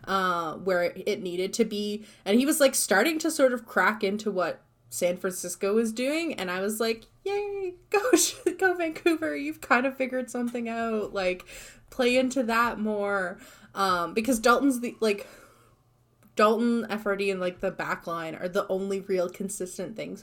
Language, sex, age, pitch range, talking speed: English, female, 20-39, 180-245 Hz, 170 wpm